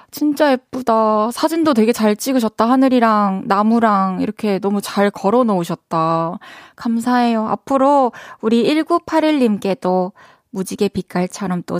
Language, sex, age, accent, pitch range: Korean, female, 20-39, native, 195-260 Hz